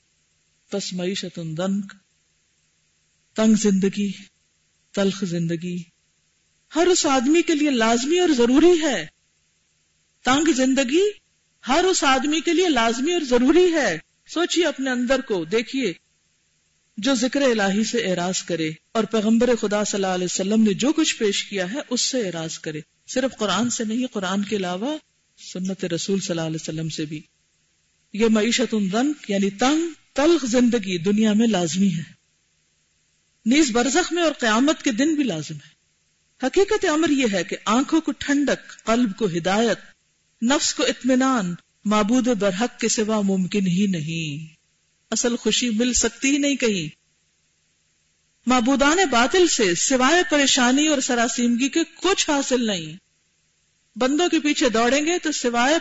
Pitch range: 175-275 Hz